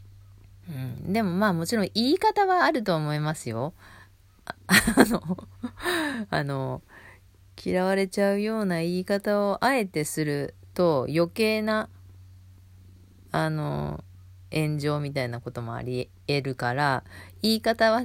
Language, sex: Japanese, female